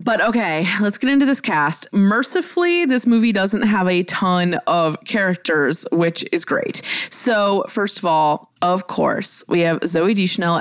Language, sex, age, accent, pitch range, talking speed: English, female, 20-39, American, 170-225 Hz, 165 wpm